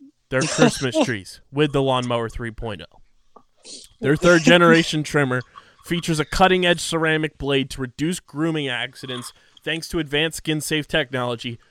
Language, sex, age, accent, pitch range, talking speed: English, male, 20-39, American, 130-165 Hz, 125 wpm